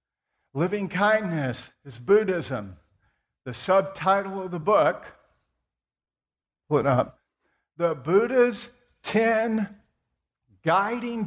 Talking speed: 80 wpm